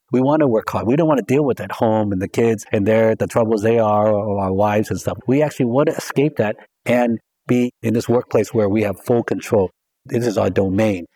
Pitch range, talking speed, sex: 100-115 Hz, 245 wpm, male